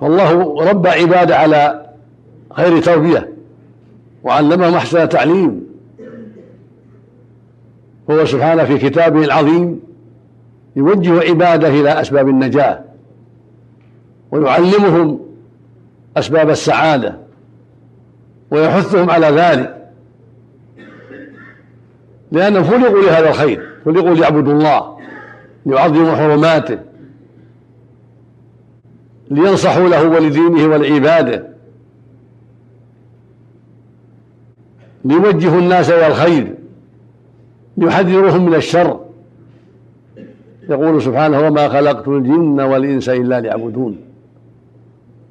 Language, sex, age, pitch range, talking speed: Arabic, male, 60-79, 120-160 Hz, 70 wpm